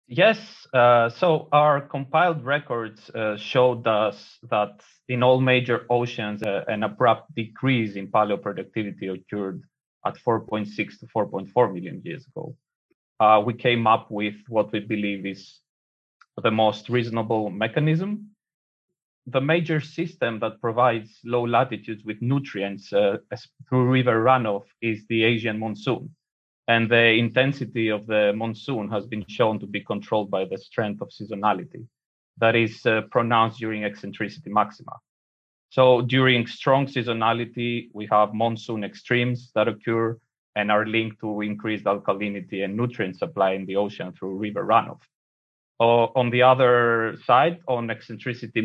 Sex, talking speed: male, 140 wpm